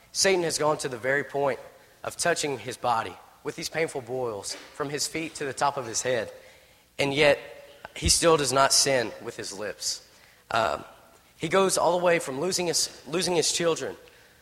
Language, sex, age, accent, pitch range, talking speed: English, male, 30-49, American, 120-155 Hz, 190 wpm